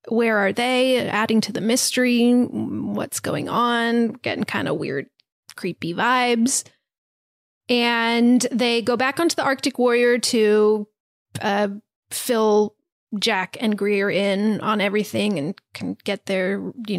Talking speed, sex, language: 135 wpm, female, English